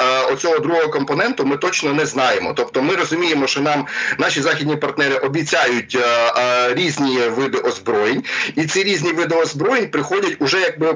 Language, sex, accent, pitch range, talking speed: Ukrainian, male, native, 135-165 Hz, 160 wpm